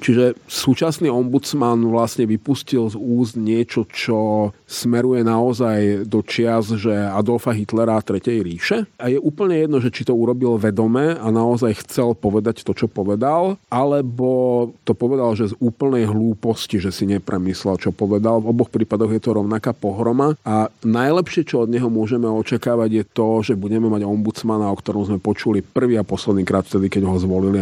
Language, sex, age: Slovak, male, 40-59